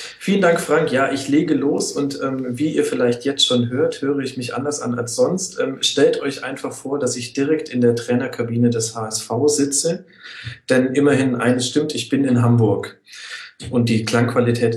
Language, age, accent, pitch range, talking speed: German, 40-59, German, 120-155 Hz, 190 wpm